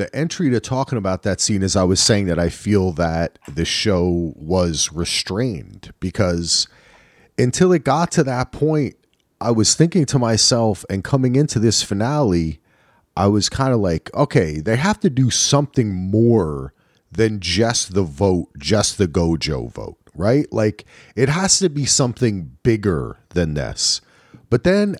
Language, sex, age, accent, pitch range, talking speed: English, male, 30-49, American, 95-140 Hz, 165 wpm